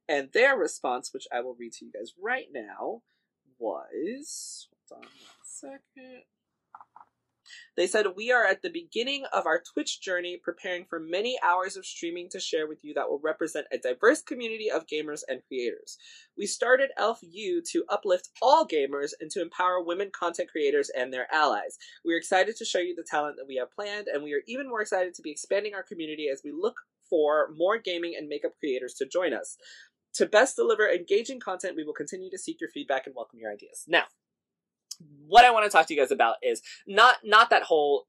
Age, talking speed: 20-39, 205 wpm